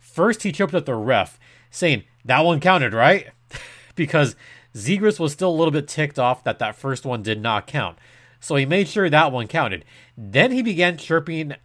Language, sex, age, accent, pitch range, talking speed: English, male, 30-49, American, 110-165 Hz, 195 wpm